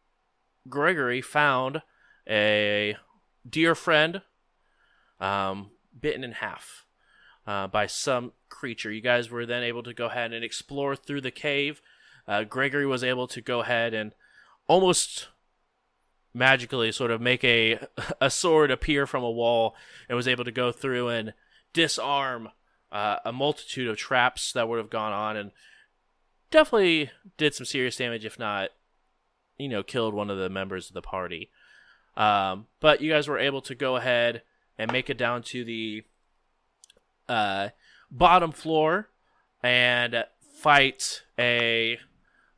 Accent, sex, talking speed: American, male, 145 wpm